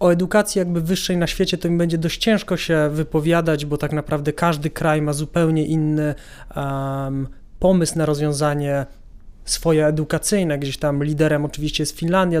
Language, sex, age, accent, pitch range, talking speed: Polish, male, 20-39, native, 150-175 Hz, 155 wpm